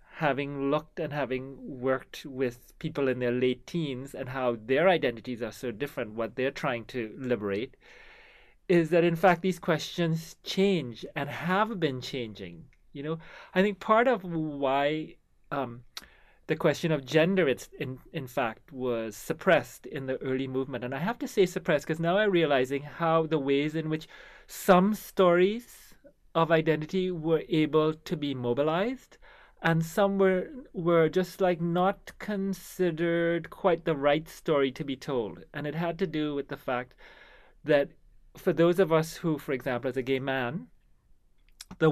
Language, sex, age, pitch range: English, male, 30-49, 130-170 Hz